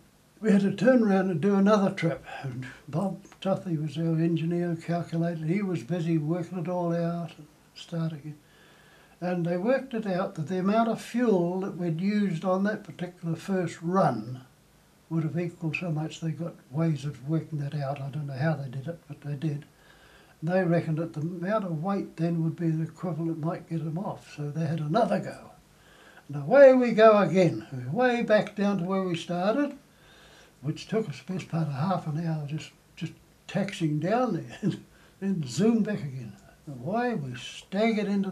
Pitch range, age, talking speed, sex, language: 160-195 Hz, 60-79, 195 wpm, male, English